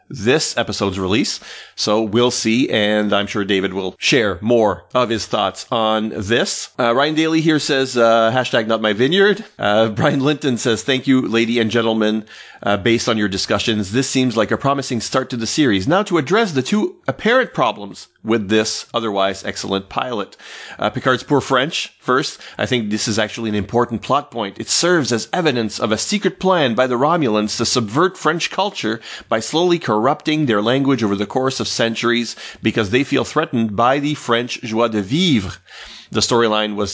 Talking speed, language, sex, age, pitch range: 185 wpm, English, male, 30-49, 105-130 Hz